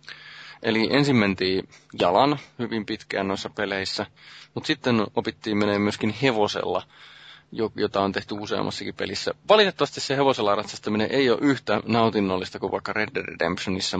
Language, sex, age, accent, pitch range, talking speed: Finnish, male, 30-49, native, 100-125 Hz, 135 wpm